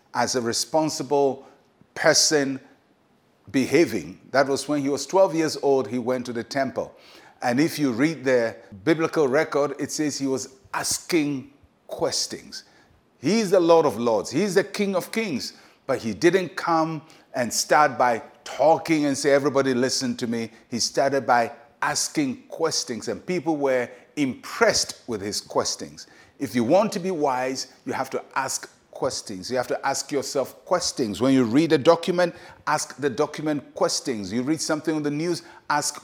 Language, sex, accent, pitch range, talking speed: English, male, Nigerian, 125-165 Hz, 165 wpm